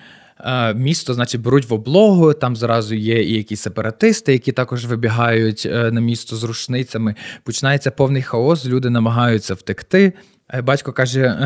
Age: 20-39